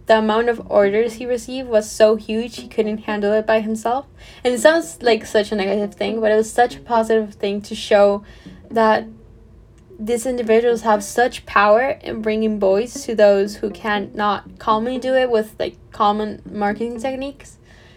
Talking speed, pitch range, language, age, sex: 180 wpm, 210-240 Hz, English, 10-29, female